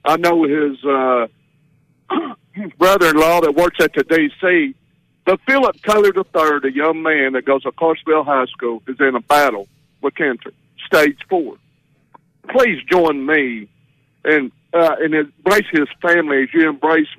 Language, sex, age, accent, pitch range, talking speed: English, male, 60-79, American, 150-230 Hz, 150 wpm